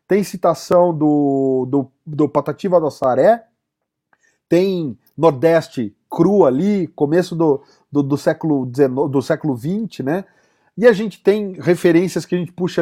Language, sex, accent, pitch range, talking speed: Portuguese, male, Brazilian, 150-195 Hz, 130 wpm